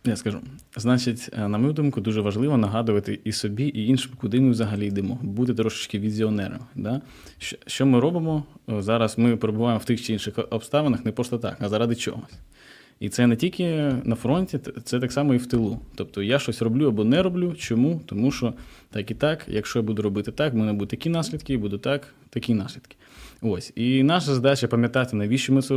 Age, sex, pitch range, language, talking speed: 20-39, male, 110-130 Hz, Ukrainian, 200 wpm